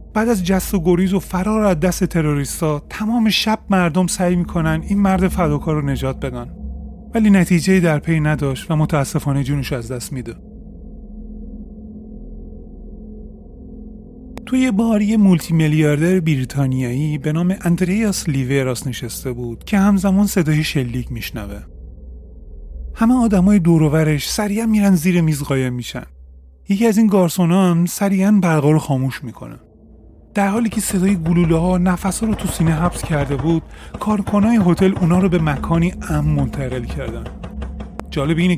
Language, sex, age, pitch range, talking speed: Persian, male, 30-49, 140-195 Hz, 145 wpm